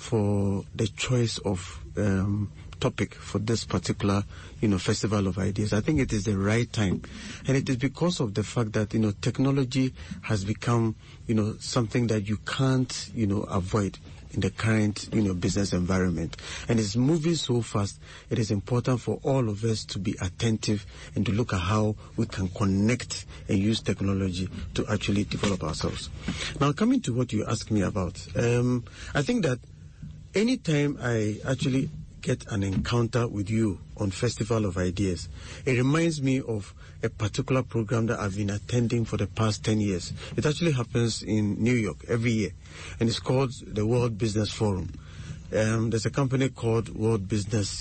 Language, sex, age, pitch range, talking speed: English, male, 50-69, 95-120 Hz, 180 wpm